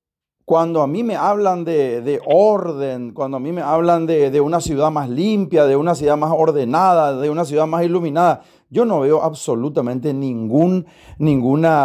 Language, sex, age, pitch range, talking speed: Spanish, male, 40-59, 145-180 Hz, 170 wpm